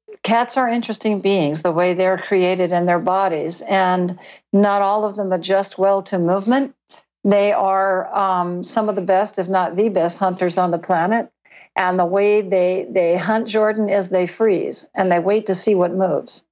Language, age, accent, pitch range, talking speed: English, 60-79, American, 185-210 Hz, 190 wpm